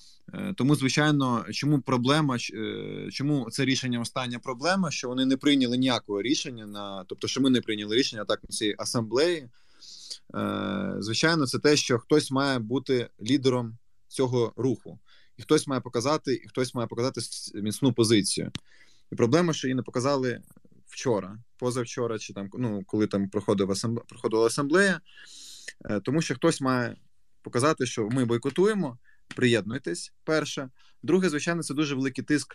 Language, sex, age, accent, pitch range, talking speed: Ukrainian, male, 20-39, native, 115-140 Hz, 140 wpm